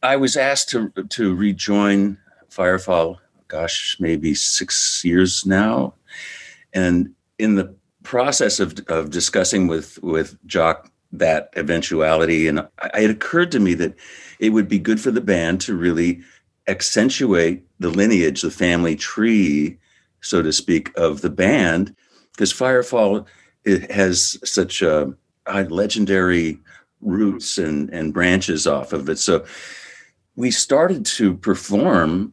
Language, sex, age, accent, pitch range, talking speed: English, male, 60-79, American, 80-100 Hz, 135 wpm